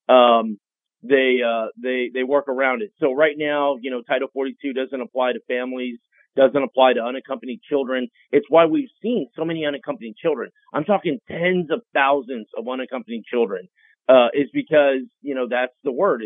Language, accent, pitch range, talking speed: English, American, 130-165 Hz, 175 wpm